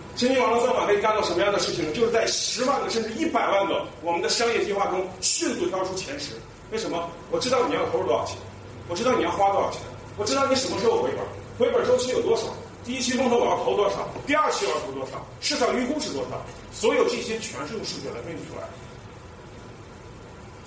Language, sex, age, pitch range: Chinese, male, 30-49, 180-260 Hz